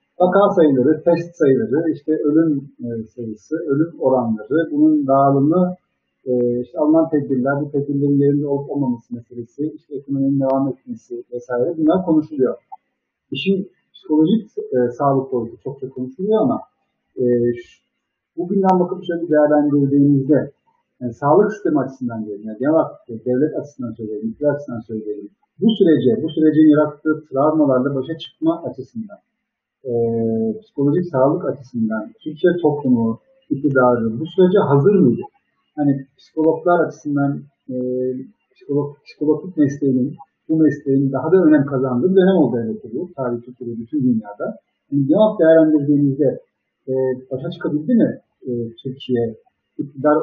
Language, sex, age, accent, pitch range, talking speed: Turkish, male, 50-69, native, 130-160 Hz, 125 wpm